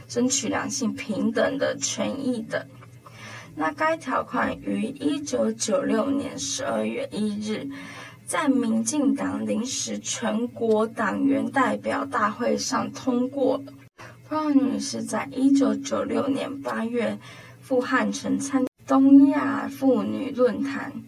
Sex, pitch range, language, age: female, 225-275 Hz, Chinese, 10-29